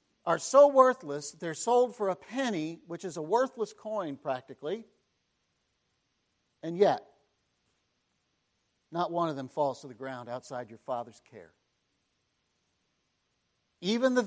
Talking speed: 125 wpm